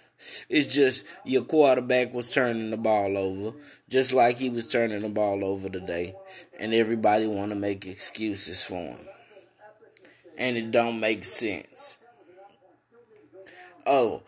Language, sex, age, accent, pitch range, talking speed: English, male, 20-39, American, 120-175 Hz, 135 wpm